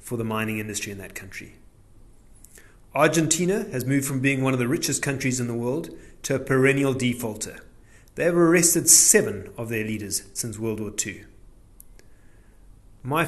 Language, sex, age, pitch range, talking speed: English, male, 30-49, 110-140 Hz, 165 wpm